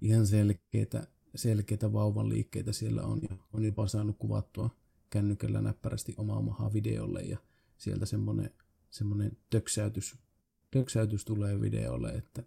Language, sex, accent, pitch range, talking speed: Finnish, male, native, 105-110 Hz, 115 wpm